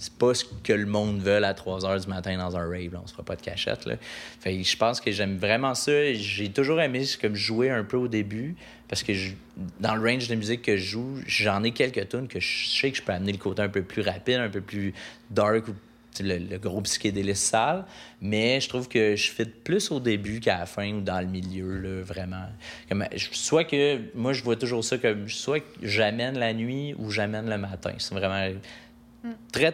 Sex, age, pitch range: male, 30-49, 100-120 Hz